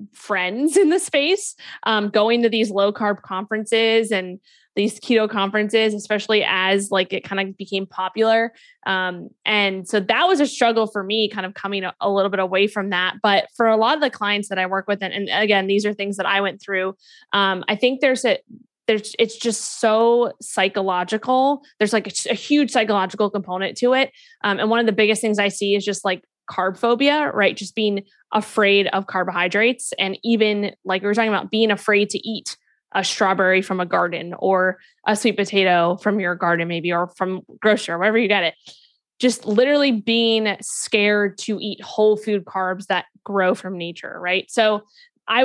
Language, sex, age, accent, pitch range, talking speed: English, female, 20-39, American, 190-225 Hz, 200 wpm